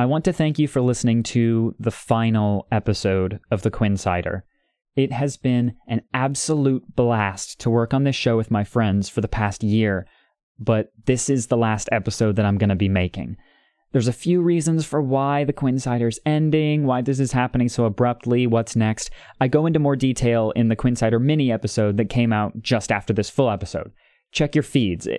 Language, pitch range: English, 110-135 Hz